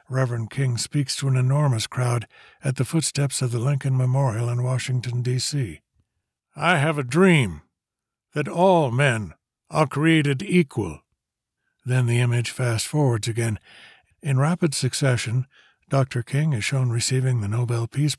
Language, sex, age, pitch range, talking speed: English, male, 60-79, 120-140 Hz, 140 wpm